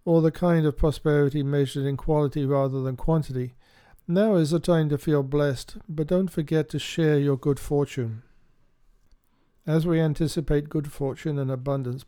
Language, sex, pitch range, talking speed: English, male, 135-155 Hz, 165 wpm